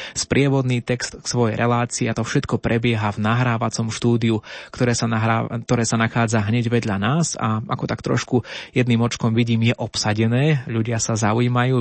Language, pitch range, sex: Slovak, 110-130 Hz, male